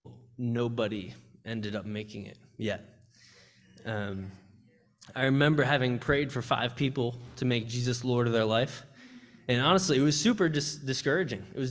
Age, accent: 20-39, American